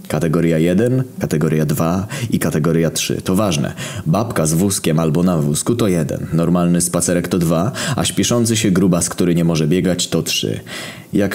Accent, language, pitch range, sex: native, Polish, 85-105 Hz, male